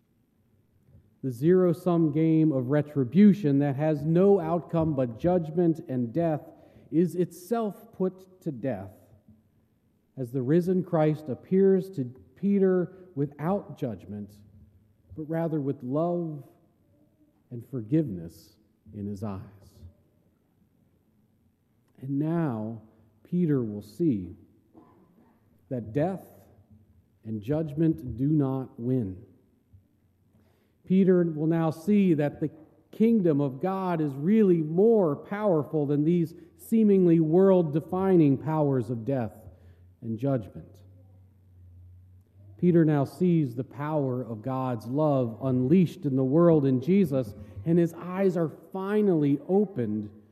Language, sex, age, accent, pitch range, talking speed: English, male, 40-59, American, 110-170 Hz, 105 wpm